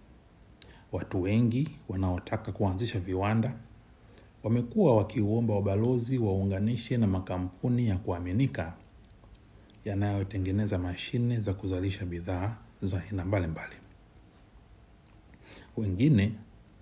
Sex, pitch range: male, 95-110 Hz